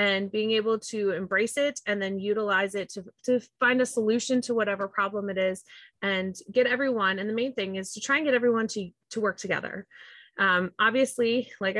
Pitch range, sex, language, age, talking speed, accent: 195-235 Hz, female, English, 20-39, 205 wpm, American